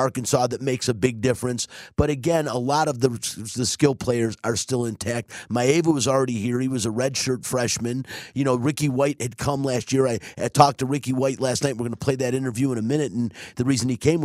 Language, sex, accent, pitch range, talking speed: English, male, American, 115-140 Hz, 240 wpm